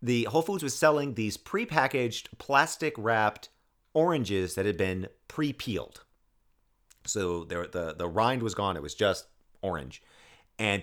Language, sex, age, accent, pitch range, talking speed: English, male, 40-59, American, 90-115 Hz, 140 wpm